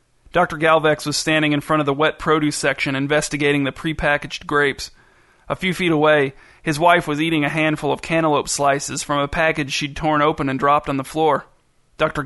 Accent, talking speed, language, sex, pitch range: American, 195 wpm, English, male, 140-155 Hz